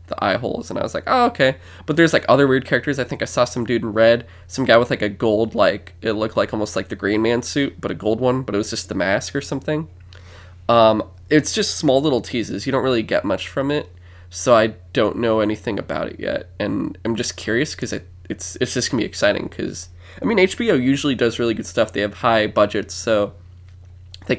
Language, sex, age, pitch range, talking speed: English, male, 20-39, 90-120 Hz, 245 wpm